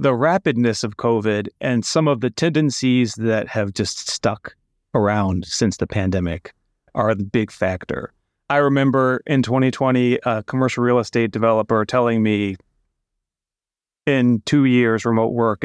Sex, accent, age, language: male, American, 30-49, English